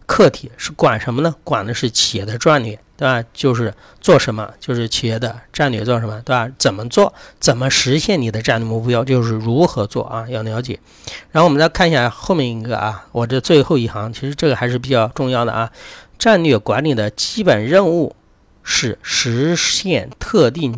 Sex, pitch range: male, 115-140 Hz